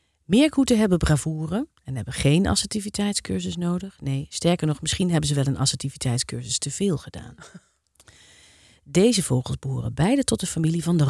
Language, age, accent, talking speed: Dutch, 40-59, Dutch, 155 wpm